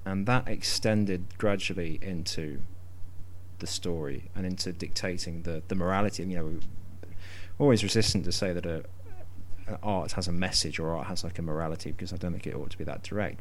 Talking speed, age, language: 195 wpm, 30-49, English